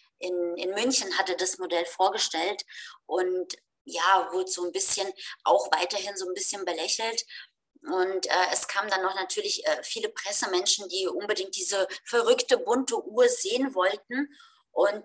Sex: female